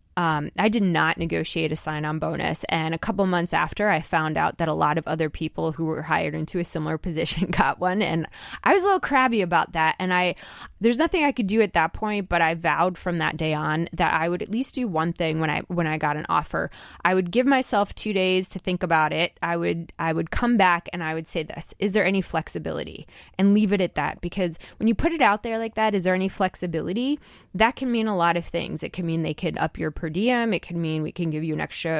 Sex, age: female, 20-39